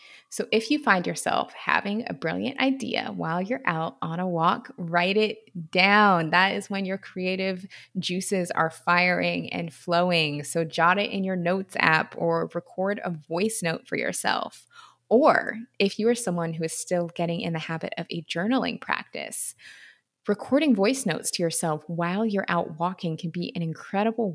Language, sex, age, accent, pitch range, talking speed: English, female, 20-39, American, 160-200 Hz, 175 wpm